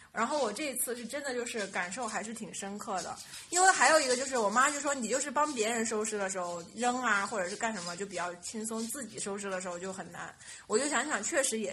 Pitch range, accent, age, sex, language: 195-265 Hz, native, 20-39, female, Chinese